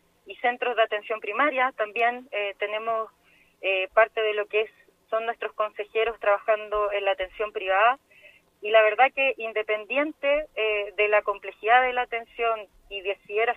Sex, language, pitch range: female, Spanish, 210-245 Hz